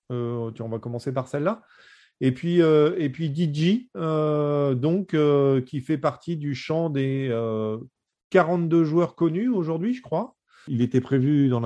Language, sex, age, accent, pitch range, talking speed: French, male, 30-49, French, 100-140 Hz, 165 wpm